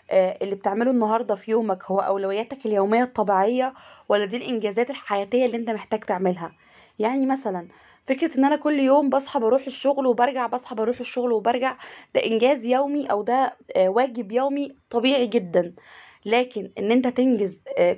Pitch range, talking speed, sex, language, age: 220-265 Hz, 150 wpm, female, Arabic, 20-39